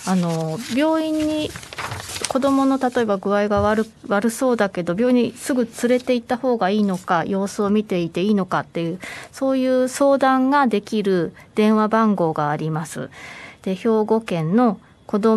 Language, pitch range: Japanese, 170-240 Hz